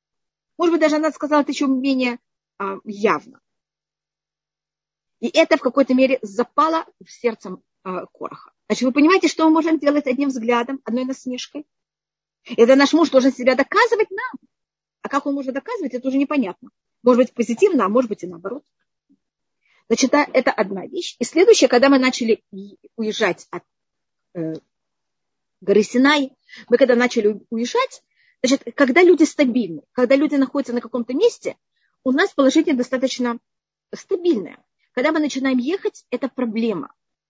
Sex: female